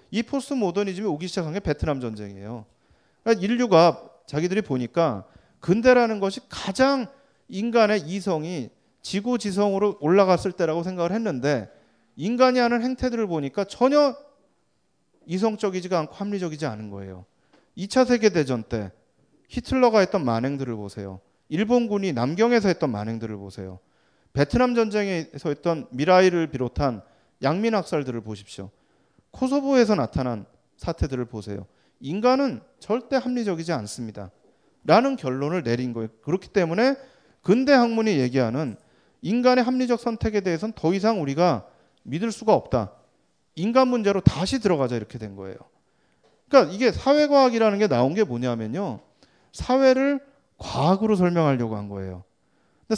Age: 30-49